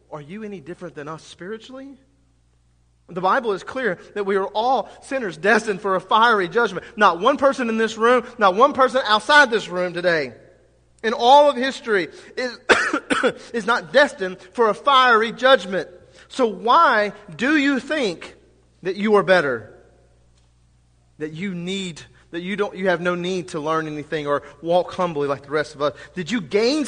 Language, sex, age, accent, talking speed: English, male, 40-59, American, 175 wpm